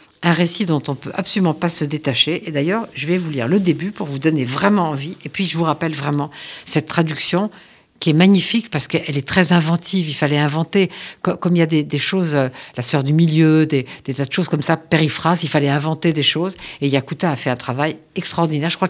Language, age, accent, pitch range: Italian, 50-69, French, 145-185 Hz